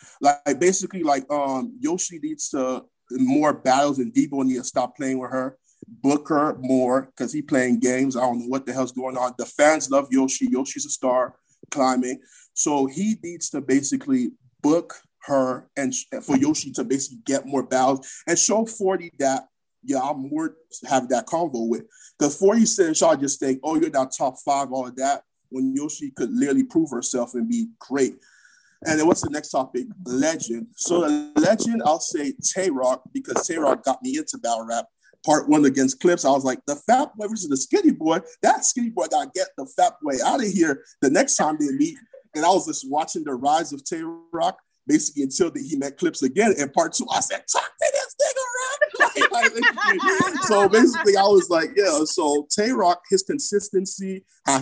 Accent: American